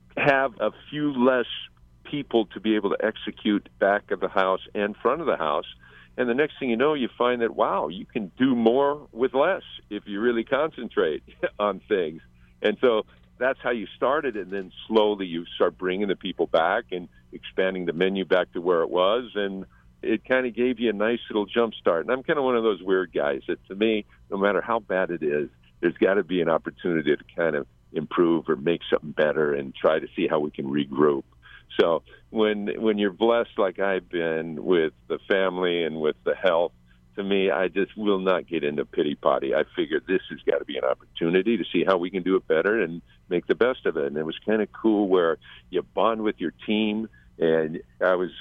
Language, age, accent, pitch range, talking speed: English, 50-69, American, 85-115 Hz, 220 wpm